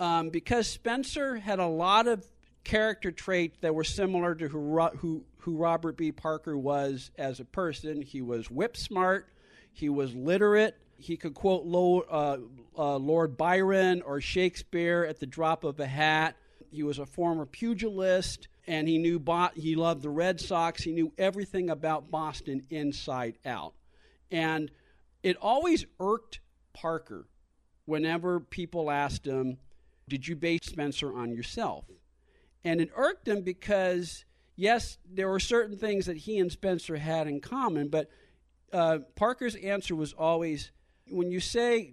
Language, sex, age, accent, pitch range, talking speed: English, male, 50-69, American, 145-185 Hz, 155 wpm